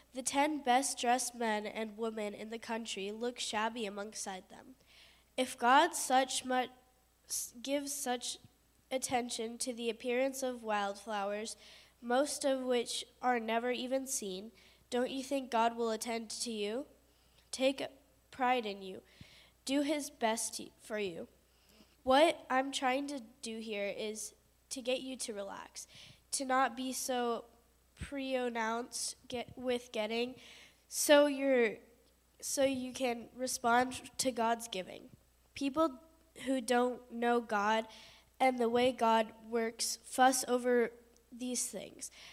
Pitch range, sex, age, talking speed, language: 225-260 Hz, female, 10-29, 130 wpm, English